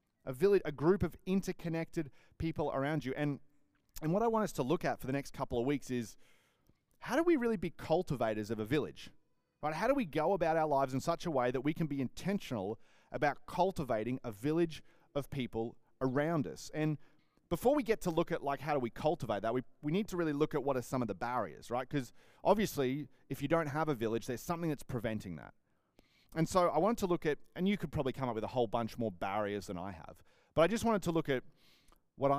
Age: 30-49